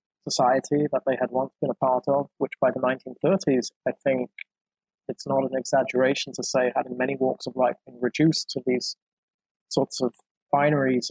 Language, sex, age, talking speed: English, male, 20-39, 185 wpm